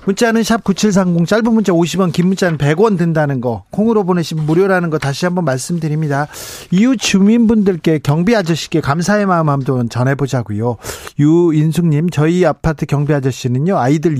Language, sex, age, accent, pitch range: Korean, male, 40-59, native, 140-180 Hz